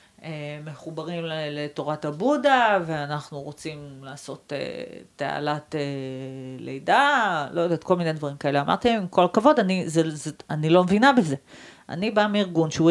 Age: 40-59